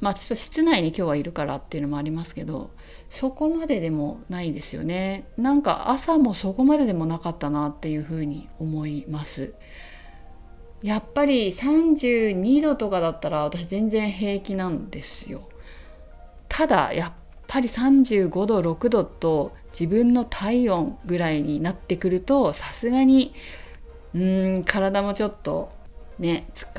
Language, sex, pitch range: Japanese, female, 155-235 Hz